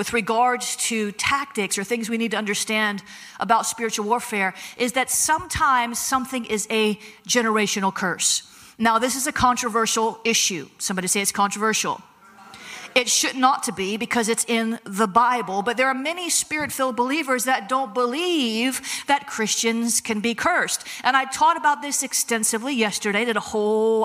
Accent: American